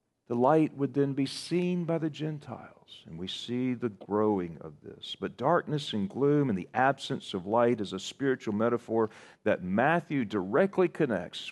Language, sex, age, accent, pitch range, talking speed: English, male, 40-59, American, 120-165 Hz, 170 wpm